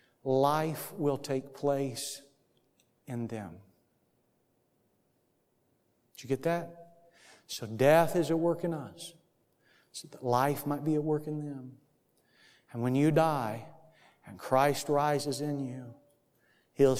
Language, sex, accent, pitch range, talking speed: English, male, American, 130-165 Hz, 125 wpm